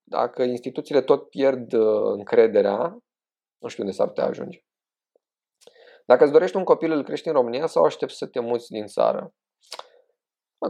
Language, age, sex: Romanian, 20-39, male